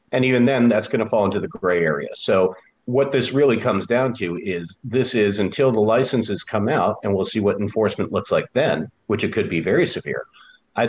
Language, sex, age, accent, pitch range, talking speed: English, male, 50-69, American, 95-115 Hz, 225 wpm